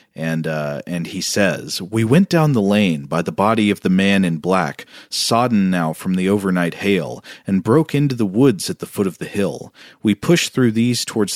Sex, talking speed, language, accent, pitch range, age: male, 215 wpm, English, American, 95-120 Hz, 40-59